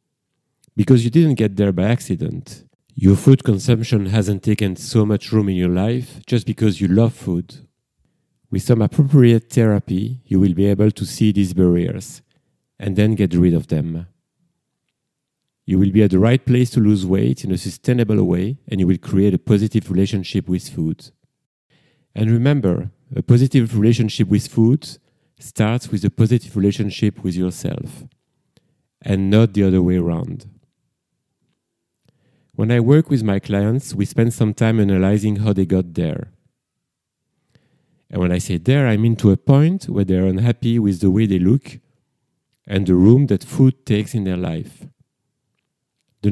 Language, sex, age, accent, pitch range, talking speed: English, male, 40-59, French, 95-130 Hz, 165 wpm